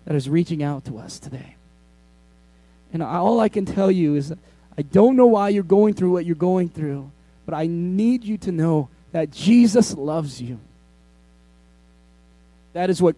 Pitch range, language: 160-265 Hz, English